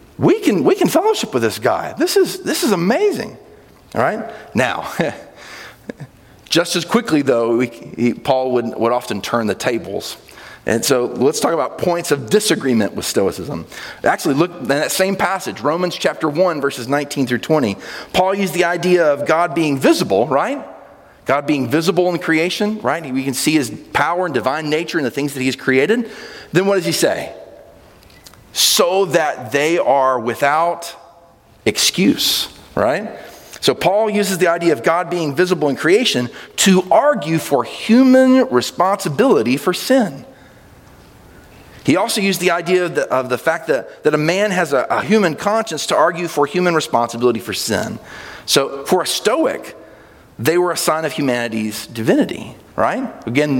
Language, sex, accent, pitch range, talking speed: English, male, American, 130-185 Hz, 170 wpm